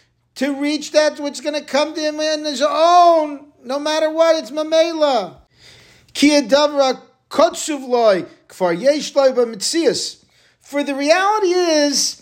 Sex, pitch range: male, 250-325 Hz